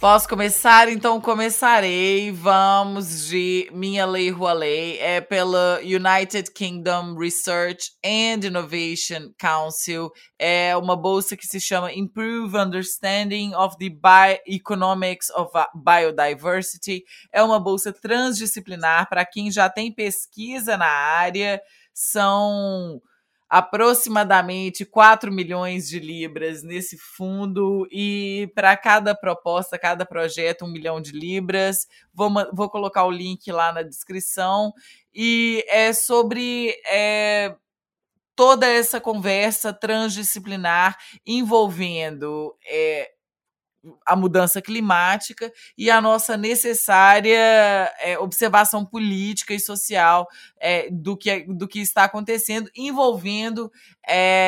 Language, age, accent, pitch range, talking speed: English, 20-39, Brazilian, 180-215 Hz, 105 wpm